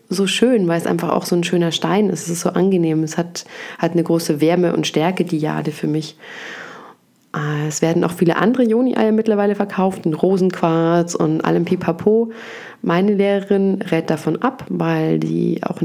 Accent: German